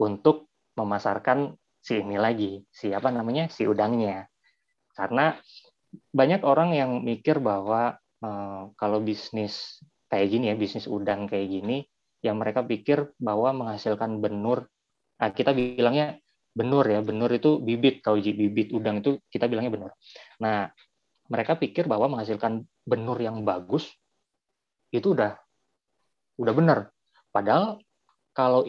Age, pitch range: 20-39, 110-135 Hz